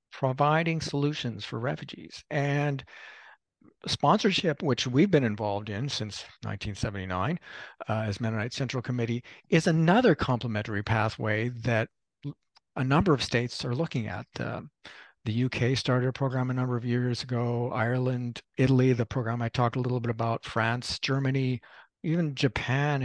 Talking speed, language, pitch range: 145 wpm, English, 120-145 Hz